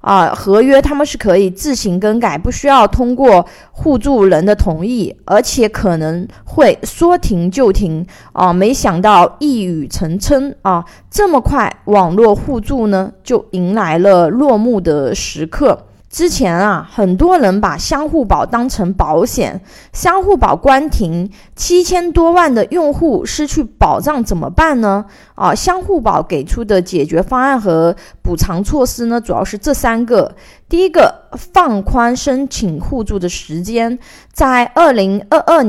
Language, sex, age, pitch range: Chinese, female, 20-39, 190-290 Hz